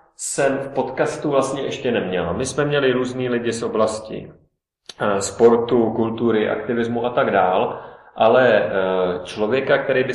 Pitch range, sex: 110-130 Hz, male